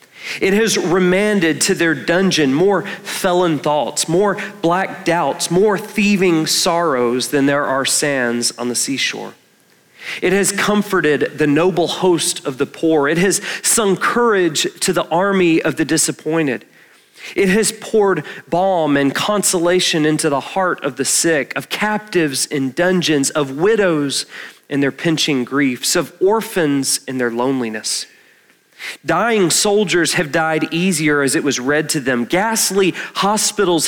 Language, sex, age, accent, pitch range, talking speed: English, male, 40-59, American, 135-185 Hz, 145 wpm